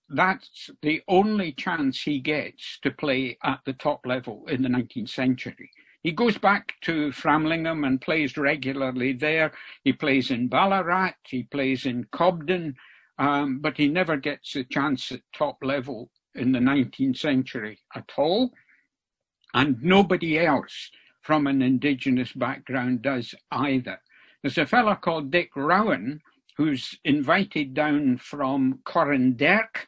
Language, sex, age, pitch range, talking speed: English, male, 60-79, 130-170 Hz, 140 wpm